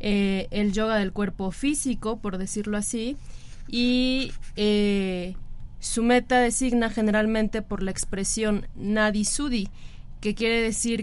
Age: 20-39